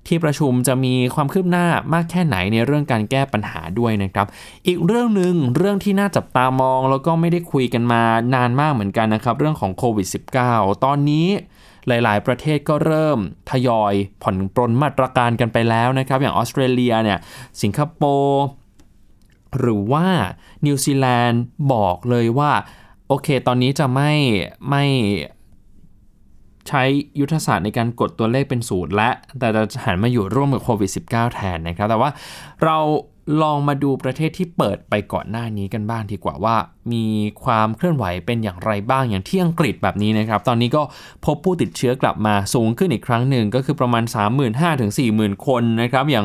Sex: male